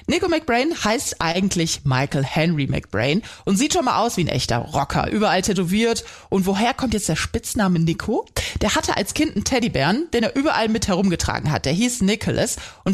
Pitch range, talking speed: 165-235 Hz, 190 wpm